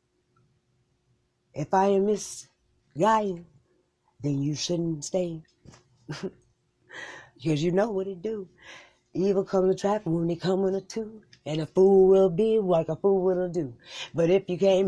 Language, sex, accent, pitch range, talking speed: English, female, American, 180-255 Hz, 155 wpm